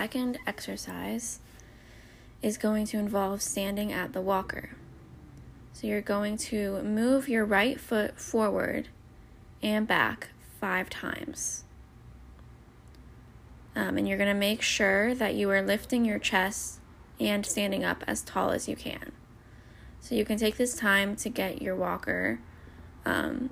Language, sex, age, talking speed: English, female, 20-39, 145 wpm